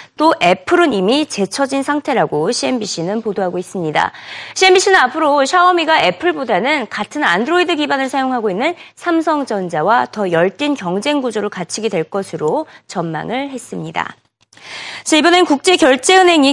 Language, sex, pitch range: Korean, female, 200-310 Hz